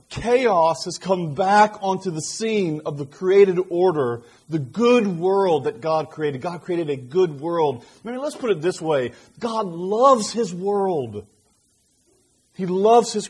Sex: male